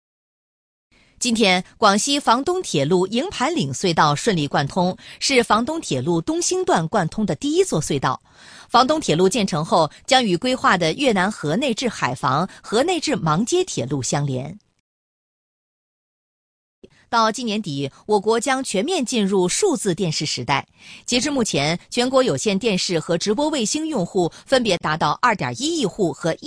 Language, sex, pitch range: Chinese, female, 170-260 Hz